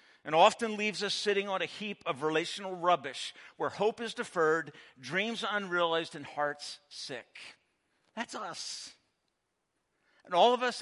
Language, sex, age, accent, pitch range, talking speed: English, male, 50-69, American, 185-240 Hz, 145 wpm